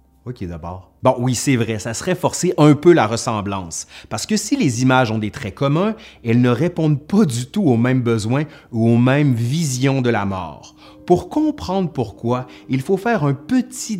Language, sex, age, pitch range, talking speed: French, male, 30-49, 115-180 Hz, 195 wpm